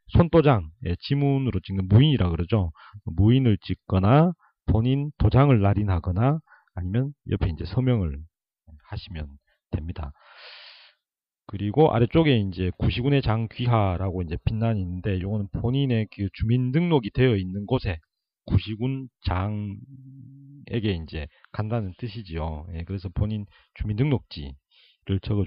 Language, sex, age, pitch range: Korean, male, 40-59, 95-130 Hz